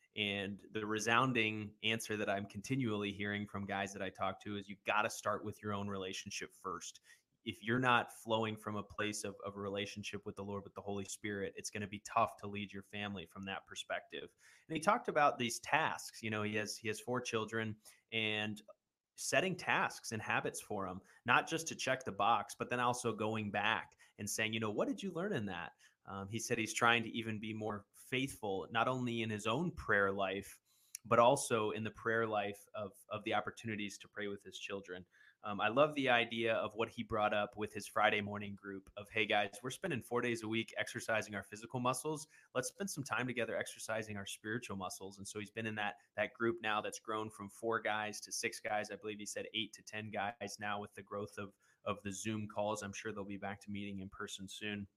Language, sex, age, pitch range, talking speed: English, male, 20-39, 100-115 Hz, 230 wpm